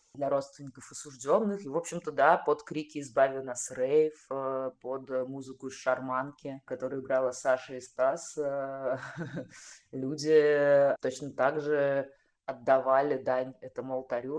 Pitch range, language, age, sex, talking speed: 130-145 Hz, Russian, 20-39, female, 140 wpm